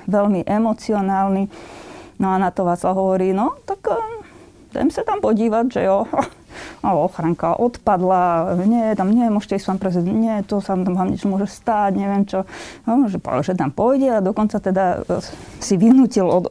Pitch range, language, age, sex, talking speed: 185-230 Hz, Slovak, 20-39, female, 175 wpm